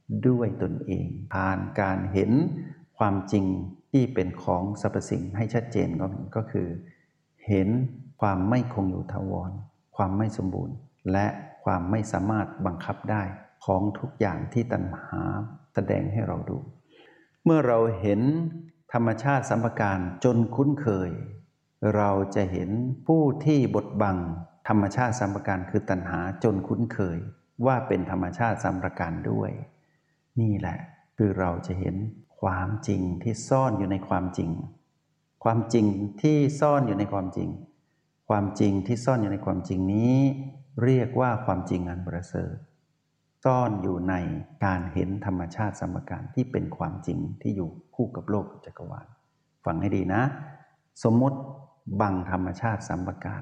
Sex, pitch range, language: male, 95-130 Hz, Thai